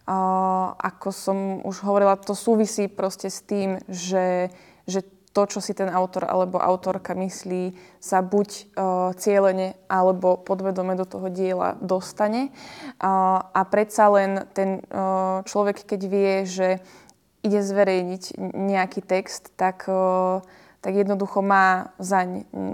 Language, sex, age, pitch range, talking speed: Slovak, female, 20-39, 185-200 Hz, 130 wpm